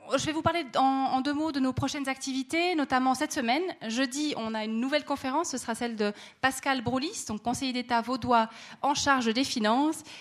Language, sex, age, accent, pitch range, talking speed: French, female, 20-39, French, 230-275 Hz, 200 wpm